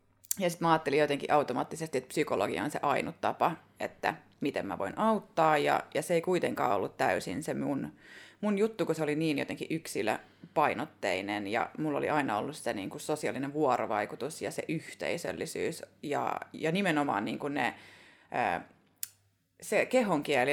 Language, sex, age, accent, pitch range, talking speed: Finnish, female, 30-49, native, 150-200 Hz, 160 wpm